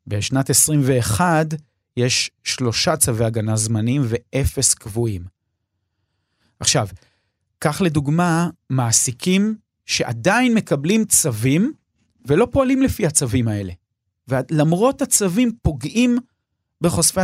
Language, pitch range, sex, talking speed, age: Hebrew, 115-160 Hz, male, 85 wpm, 40-59